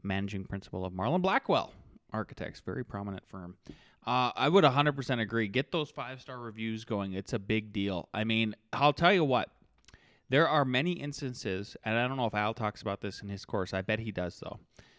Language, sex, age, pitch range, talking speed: English, male, 20-39, 100-135 Hz, 200 wpm